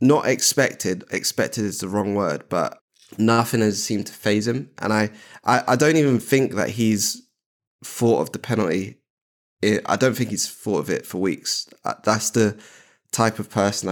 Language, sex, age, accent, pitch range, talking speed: English, male, 10-29, British, 100-115 Hz, 175 wpm